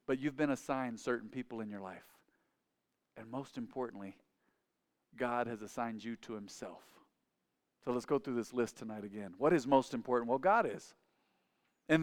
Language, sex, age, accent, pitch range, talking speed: English, male, 50-69, American, 125-165 Hz, 170 wpm